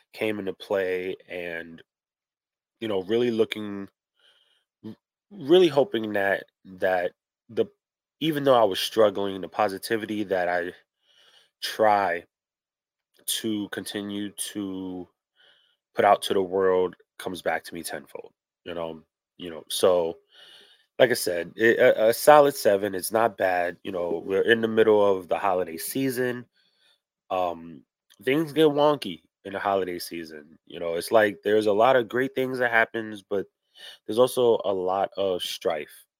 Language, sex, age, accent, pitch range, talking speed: English, male, 20-39, American, 90-125 Hz, 150 wpm